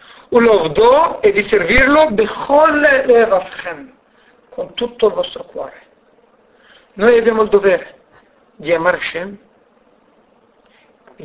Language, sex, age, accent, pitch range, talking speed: Italian, male, 60-79, native, 210-280 Hz, 90 wpm